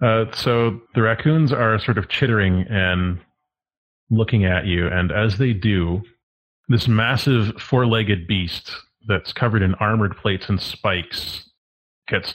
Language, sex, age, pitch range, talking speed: English, male, 30-49, 90-110 Hz, 135 wpm